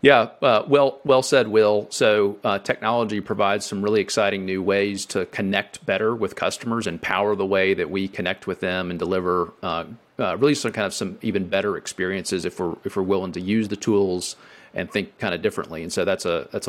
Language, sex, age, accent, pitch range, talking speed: English, male, 40-59, American, 100-120 Hz, 215 wpm